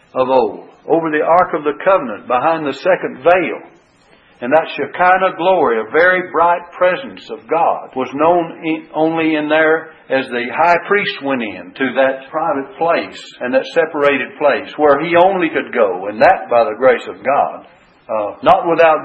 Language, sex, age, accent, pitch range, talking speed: English, male, 60-79, American, 135-175 Hz, 175 wpm